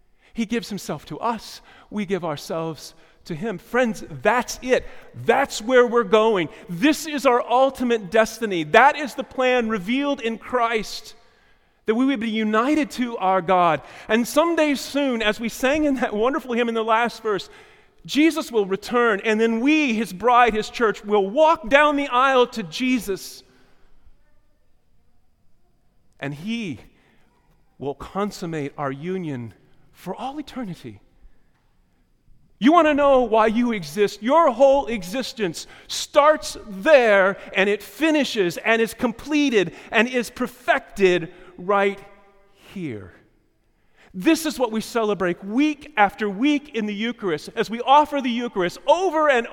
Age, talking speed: 40-59, 145 wpm